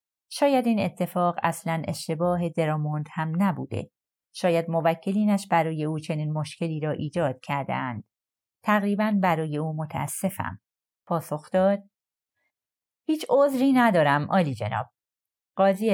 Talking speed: 110 wpm